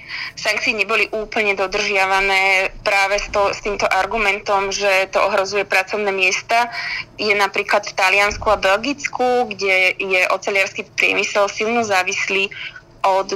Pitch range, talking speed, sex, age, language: 190-210 Hz, 125 wpm, female, 20-39, Slovak